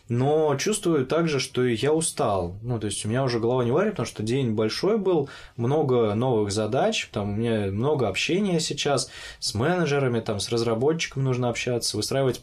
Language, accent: Russian, native